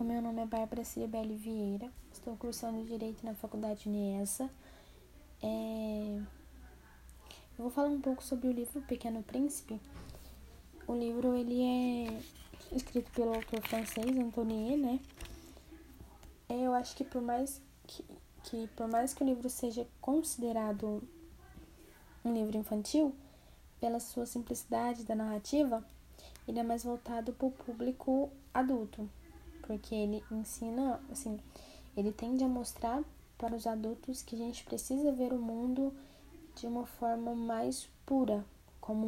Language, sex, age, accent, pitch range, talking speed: Portuguese, female, 10-29, Brazilian, 220-255 Hz, 135 wpm